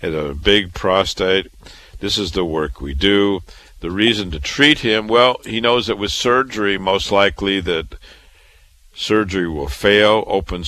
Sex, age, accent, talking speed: male, 50-69, American, 150 wpm